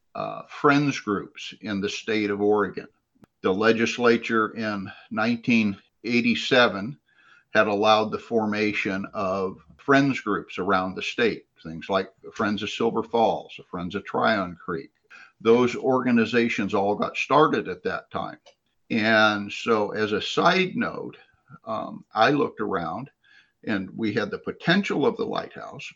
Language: English